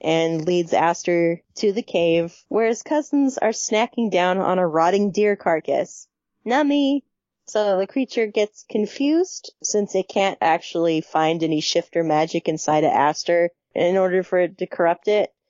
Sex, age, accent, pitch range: female, 20-39, American, 165-190 Hz